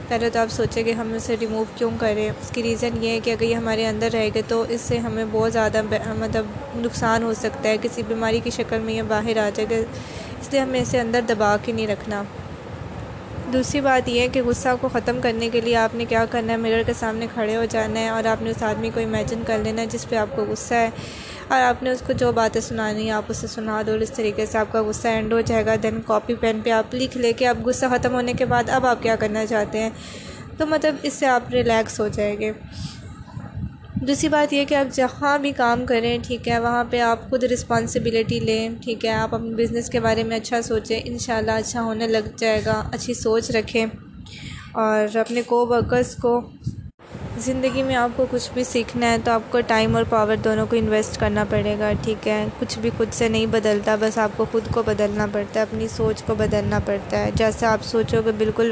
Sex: female